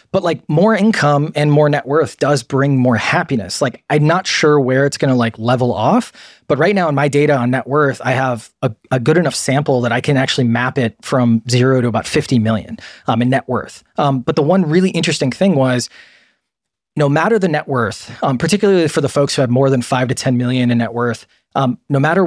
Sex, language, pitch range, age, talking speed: male, English, 120-155 Hz, 20-39, 235 wpm